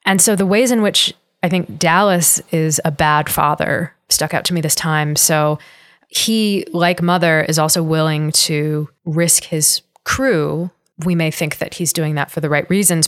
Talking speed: 190 wpm